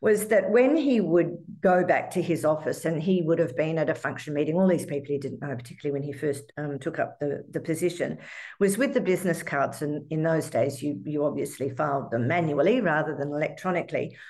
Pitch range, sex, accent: 145-180 Hz, female, Australian